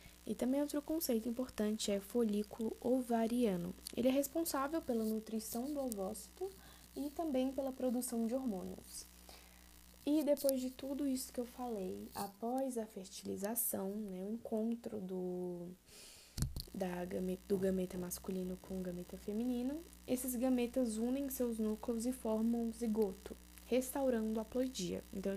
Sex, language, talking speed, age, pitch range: female, Portuguese, 130 wpm, 10-29, 195-255 Hz